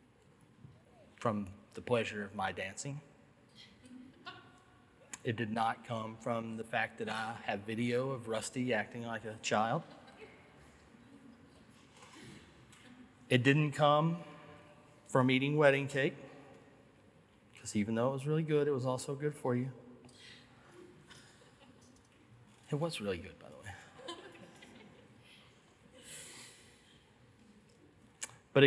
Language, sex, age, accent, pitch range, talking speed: English, male, 40-59, American, 115-145 Hz, 105 wpm